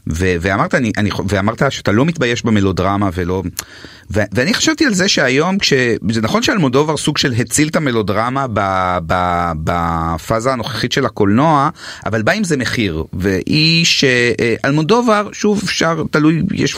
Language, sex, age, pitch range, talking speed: Hebrew, male, 30-49, 115-175 Hz, 155 wpm